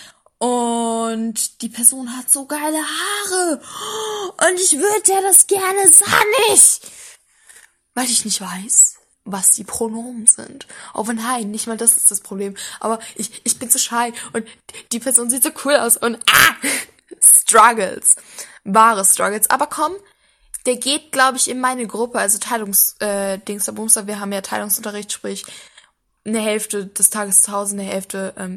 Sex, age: female, 10-29